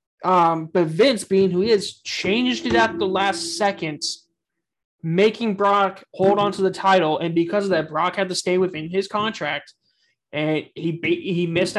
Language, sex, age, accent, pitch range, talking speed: English, male, 20-39, American, 165-195 Hz, 180 wpm